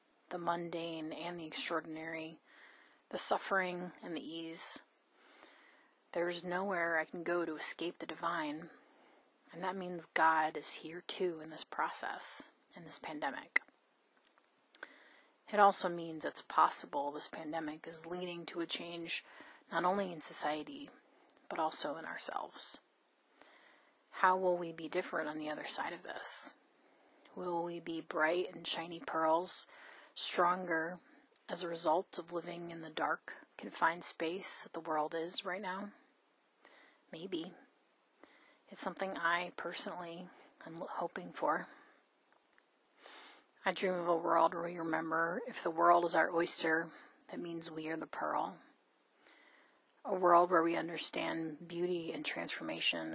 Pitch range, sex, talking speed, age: 165-180 Hz, female, 140 wpm, 30-49